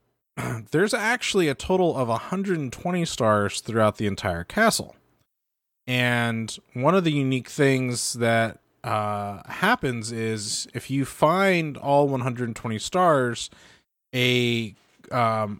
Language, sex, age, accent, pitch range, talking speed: English, male, 20-39, American, 105-125 Hz, 110 wpm